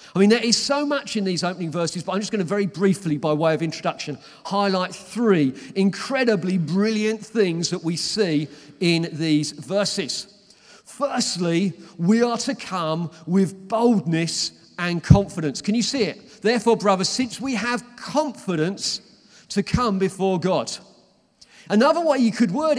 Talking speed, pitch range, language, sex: 160 wpm, 175-225 Hz, English, male